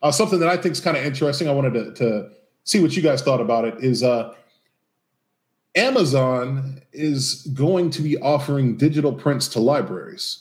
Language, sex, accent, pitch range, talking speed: English, male, American, 120-160 Hz, 185 wpm